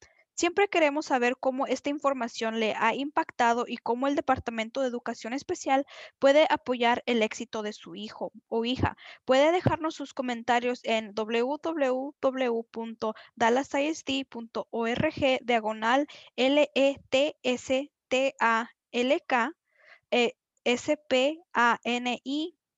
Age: 10-29